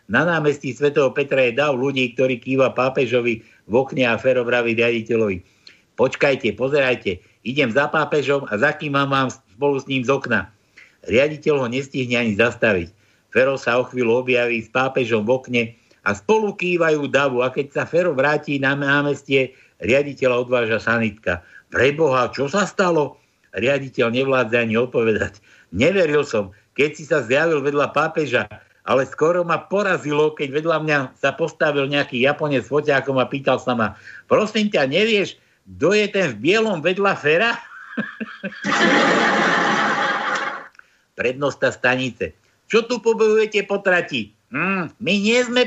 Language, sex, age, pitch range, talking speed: Slovak, male, 60-79, 125-165 Hz, 145 wpm